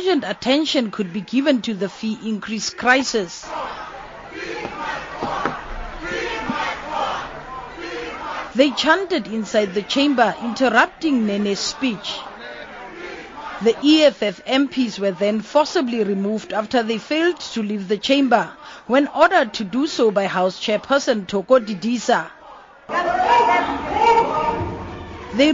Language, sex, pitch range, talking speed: English, female, 210-285 Hz, 100 wpm